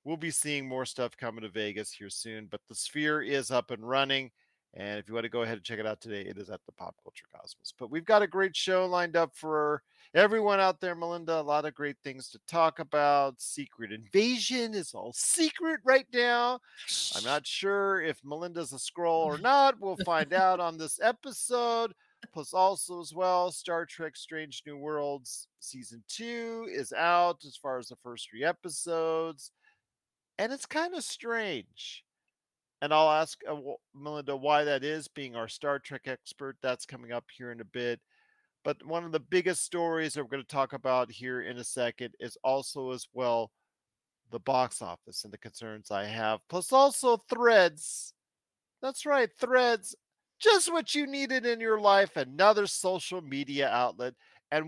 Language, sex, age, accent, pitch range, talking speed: English, male, 40-59, American, 130-195 Hz, 185 wpm